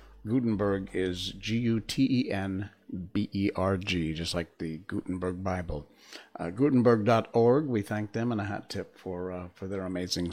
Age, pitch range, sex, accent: 50-69, 95-115 Hz, male, American